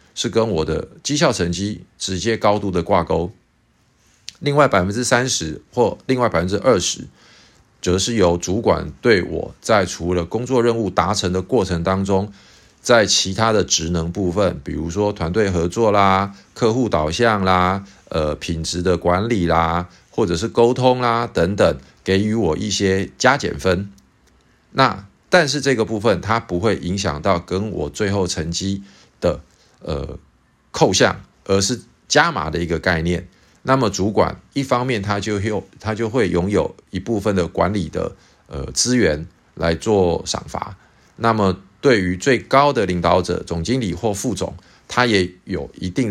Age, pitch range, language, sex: 50-69, 85-110 Hz, Chinese, male